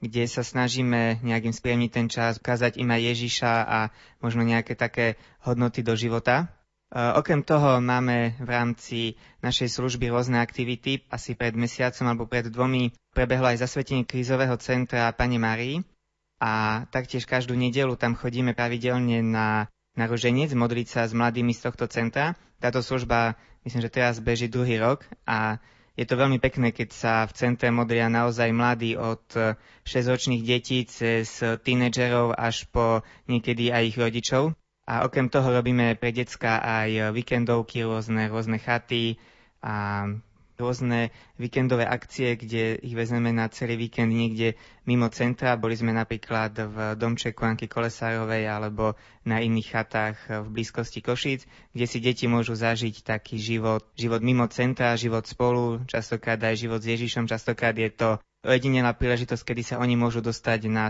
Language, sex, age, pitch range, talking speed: Slovak, male, 20-39, 115-125 Hz, 150 wpm